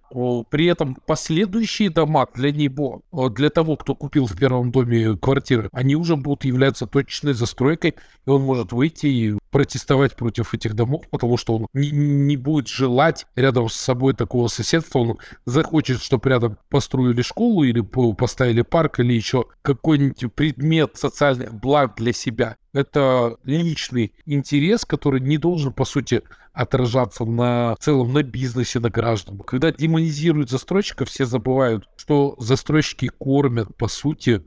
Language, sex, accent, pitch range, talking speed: Russian, male, native, 125-150 Hz, 145 wpm